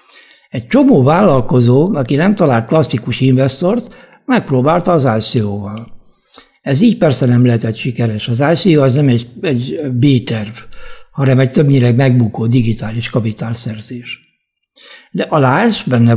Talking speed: 125 wpm